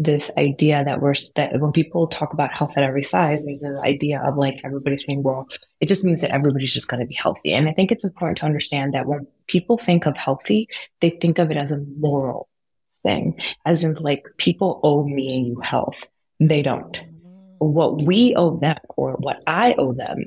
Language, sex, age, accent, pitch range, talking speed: English, female, 20-39, American, 140-175 Hz, 210 wpm